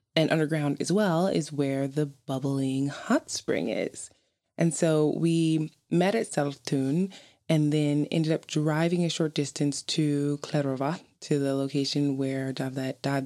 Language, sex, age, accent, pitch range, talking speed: English, female, 20-39, American, 135-160 Hz, 155 wpm